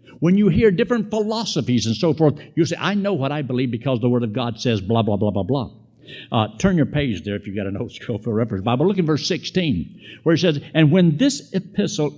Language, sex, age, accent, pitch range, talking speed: English, male, 60-79, American, 115-165 Hz, 250 wpm